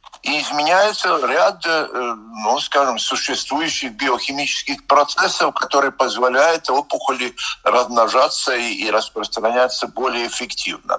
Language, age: Russian, 50-69